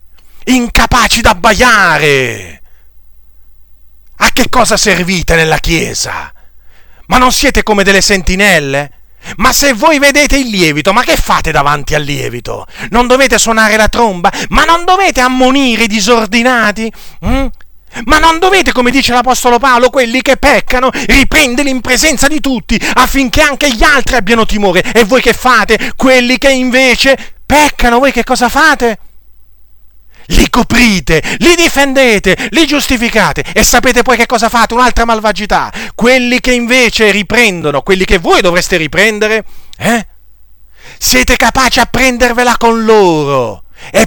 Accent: native